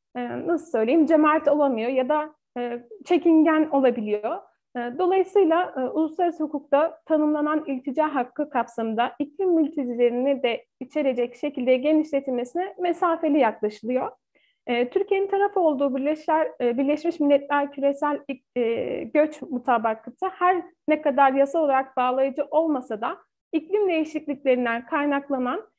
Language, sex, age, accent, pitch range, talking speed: Turkish, female, 40-59, native, 260-330 Hz, 100 wpm